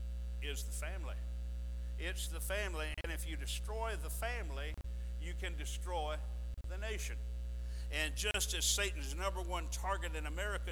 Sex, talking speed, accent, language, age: male, 145 wpm, American, English, 60-79